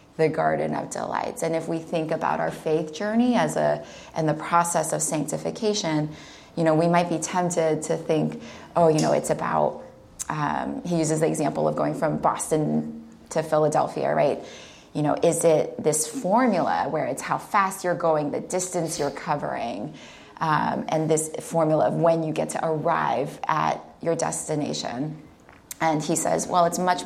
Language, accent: English, American